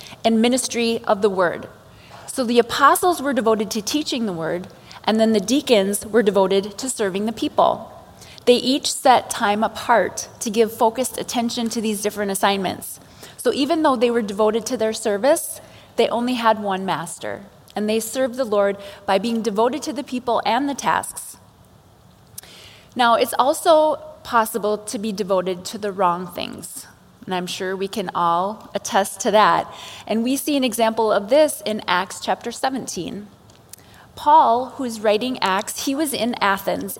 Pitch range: 200-250 Hz